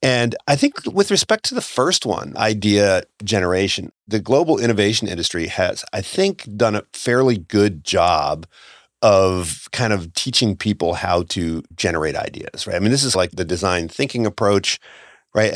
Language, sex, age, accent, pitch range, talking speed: English, male, 40-59, American, 95-140 Hz, 165 wpm